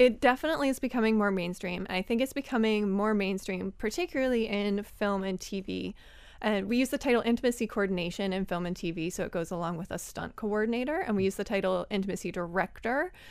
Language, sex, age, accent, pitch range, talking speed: English, female, 20-39, American, 190-235 Hz, 195 wpm